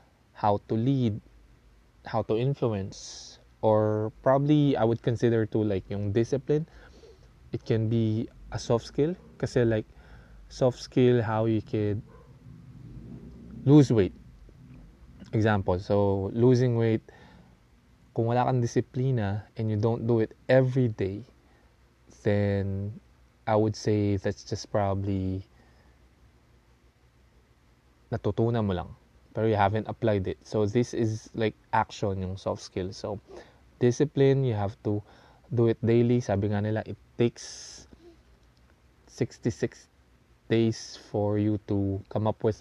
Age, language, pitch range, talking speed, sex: 20-39, English, 95-120 Hz, 125 wpm, male